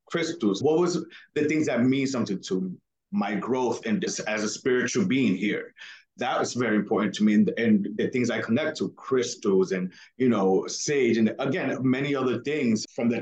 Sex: male